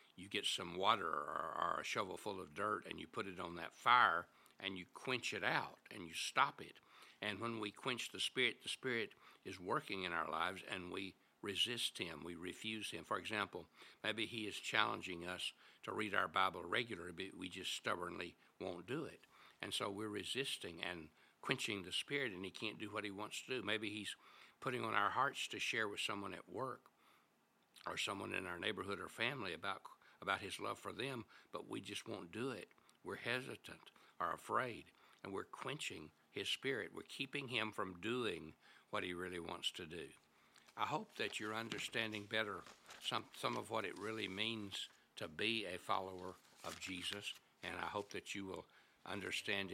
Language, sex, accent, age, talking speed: English, male, American, 60-79, 190 wpm